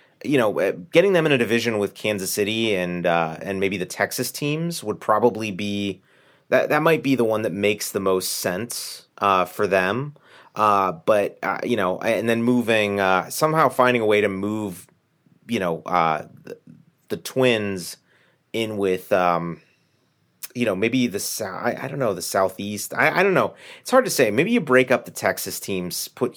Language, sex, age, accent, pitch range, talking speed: English, male, 30-49, American, 95-125 Hz, 190 wpm